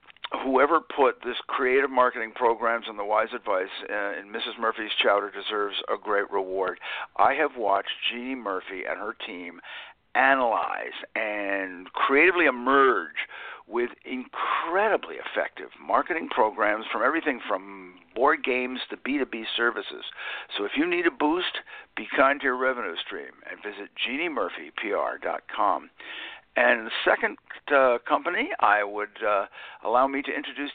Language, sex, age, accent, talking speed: English, male, 60-79, American, 135 wpm